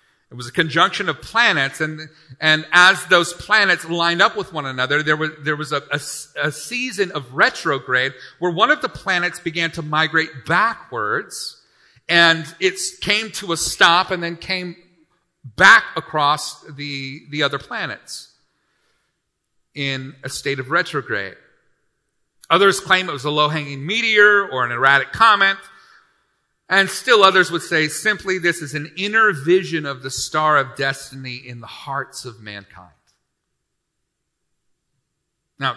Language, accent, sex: English, American, male